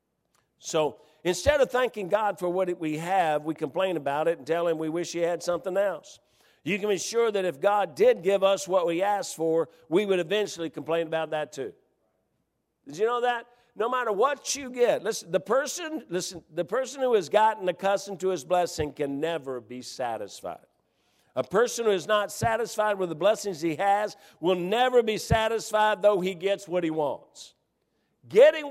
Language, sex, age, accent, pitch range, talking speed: English, male, 50-69, American, 170-240 Hz, 185 wpm